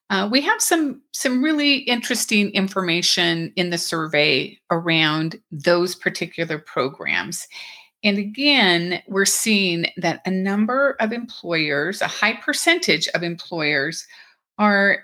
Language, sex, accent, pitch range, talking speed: English, female, American, 170-220 Hz, 120 wpm